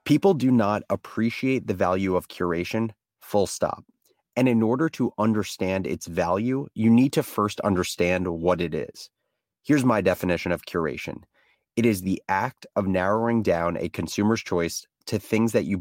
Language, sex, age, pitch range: English, male, 30-49, 90-120 Hz